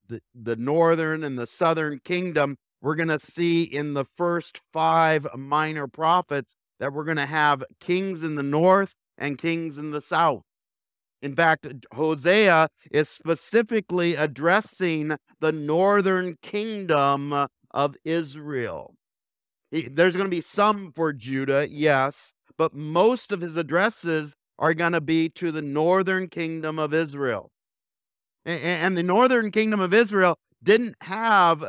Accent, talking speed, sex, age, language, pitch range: American, 135 wpm, male, 50-69, English, 145-180 Hz